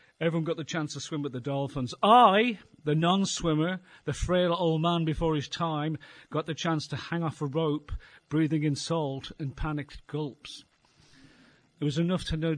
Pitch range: 125-145 Hz